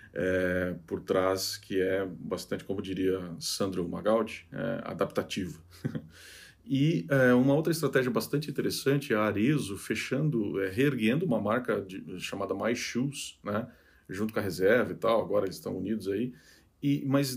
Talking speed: 135 wpm